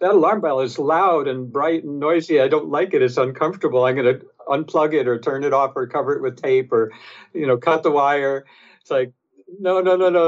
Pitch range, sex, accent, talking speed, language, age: 130-185 Hz, male, American, 240 wpm, English, 60-79